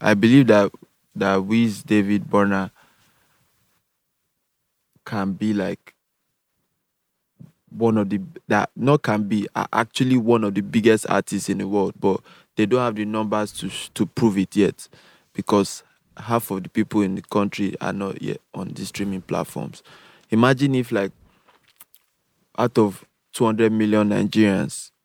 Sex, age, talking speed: male, 20-39, 145 wpm